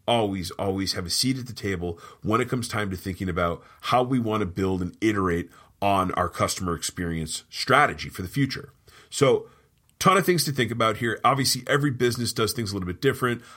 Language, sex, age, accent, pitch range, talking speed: English, male, 30-49, American, 100-125 Hz, 210 wpm